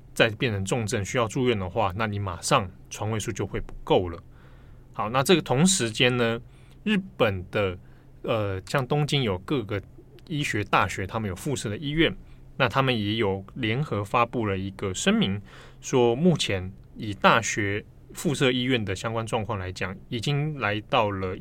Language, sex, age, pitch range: Chinese, male, 20-39, 100-130 Hz